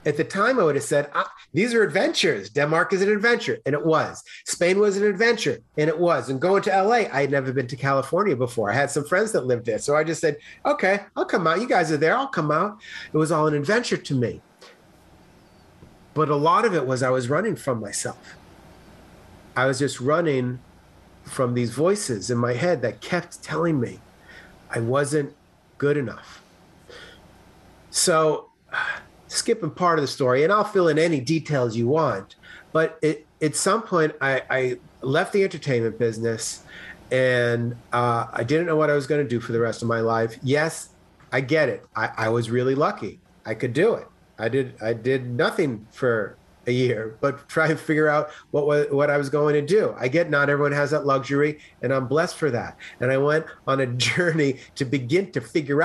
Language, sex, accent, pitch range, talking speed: English, male, American, 125-160 Hz, 205 wpm